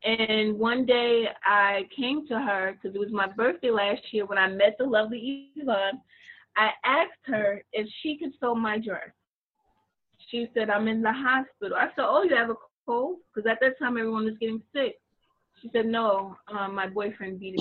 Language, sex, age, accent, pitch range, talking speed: English, female, 20-39, American, 190-235 Hz, 195 wpm